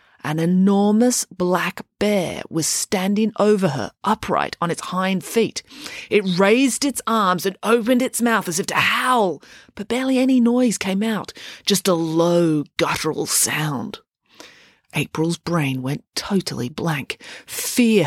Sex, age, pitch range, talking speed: female, 30-49, 150-210 Hz, 140 wpm